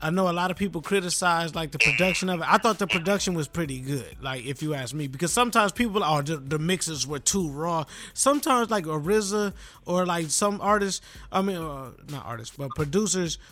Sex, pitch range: male, 155-200 Hz